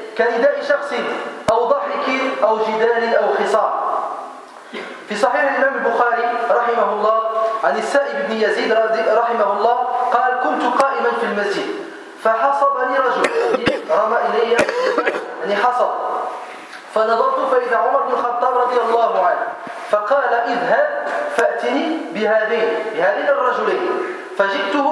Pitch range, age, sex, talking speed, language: 225-280 Hz, 40-59, male, 115 wpm, French